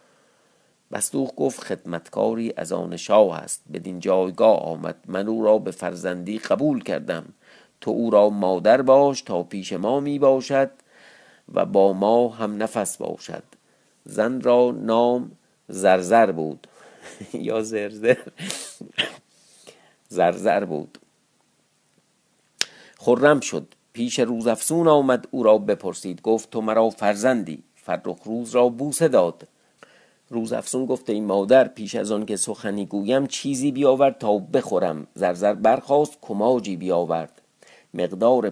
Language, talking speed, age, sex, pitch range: Persian, 125 wpm, 50-69, male, 95-125 Hz